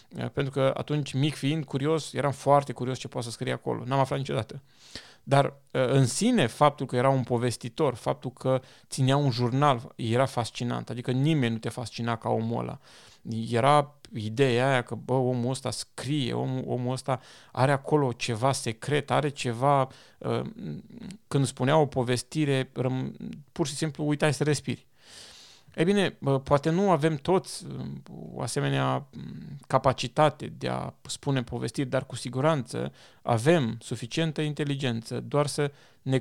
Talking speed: 145 wpm